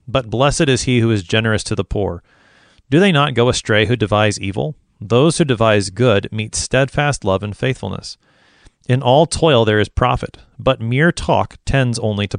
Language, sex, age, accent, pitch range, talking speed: English, male, 30-49, American, 100-125 Hz, 190 wpm